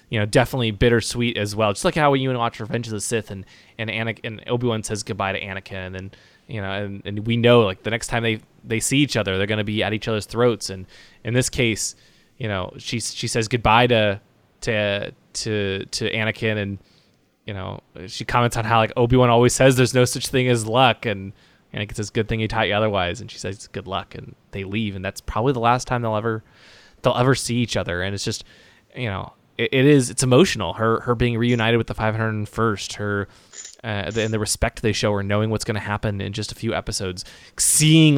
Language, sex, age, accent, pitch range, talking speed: English, male, 20-39, American, 105-125 Hz, 235 wpm